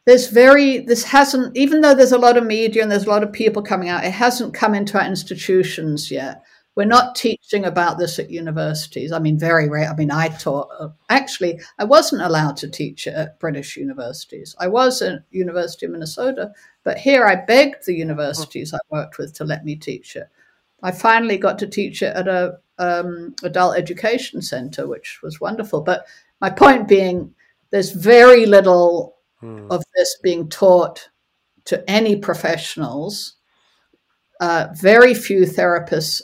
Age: 60-79